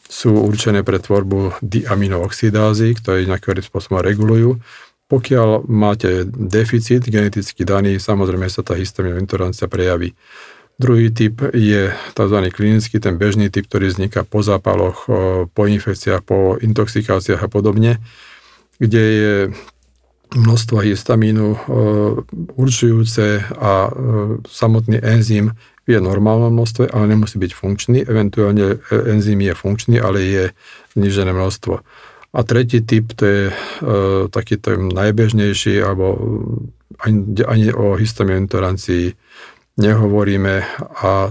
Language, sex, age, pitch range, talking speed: Slovak, male, 50-69, 95-115 Hz, 115 wpm